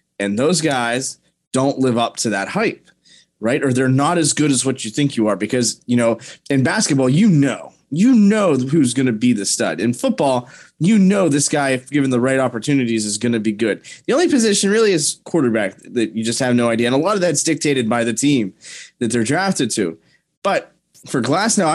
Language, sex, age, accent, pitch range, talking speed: English, male, 20-39, American, 110-140 Hz, 220 wpm